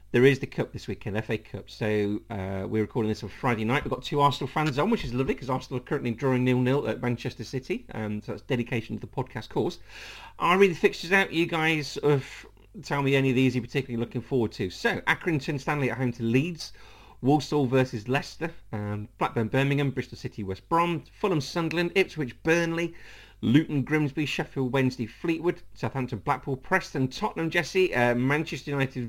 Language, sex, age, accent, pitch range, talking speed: English, male, 40-59, British, 110-145 Hz, 195 wpm